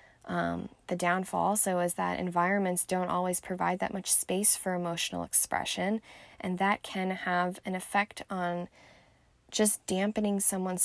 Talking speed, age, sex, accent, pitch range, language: 145 wpm, 10-29, female, American, 180-200 Hz, English